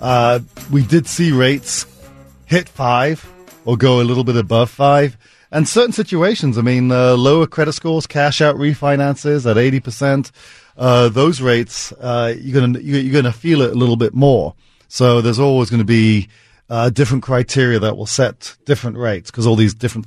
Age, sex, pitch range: 40-59, male, 120-145 Hz